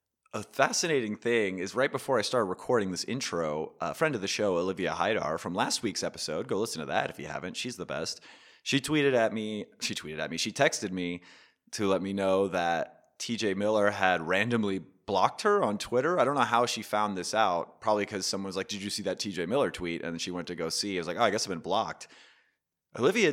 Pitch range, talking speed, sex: 100-140 Hz, 240 wpm, male